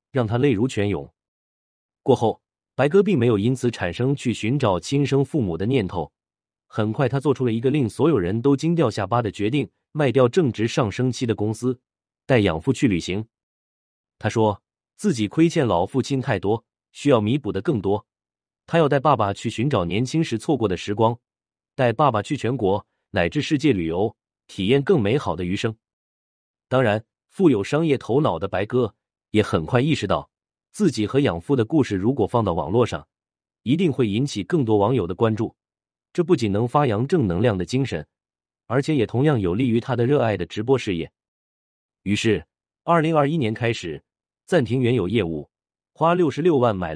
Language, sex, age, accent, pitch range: Chinese, male, 30-49, native, 100-135 Hz